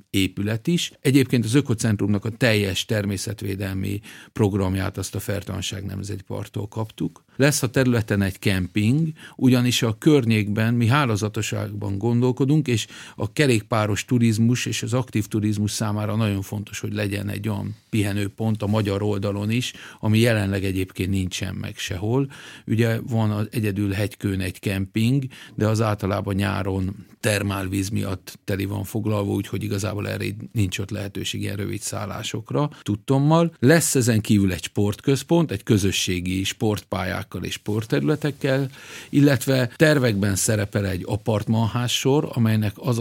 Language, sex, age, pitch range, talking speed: Hungarian, male, 50-69, 100-120 Hz, 135 wpm